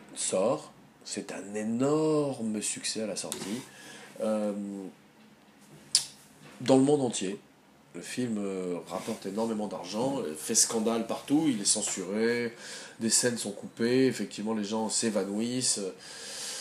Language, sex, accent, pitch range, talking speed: French, male, French, 110-140 Hz, 120 wpm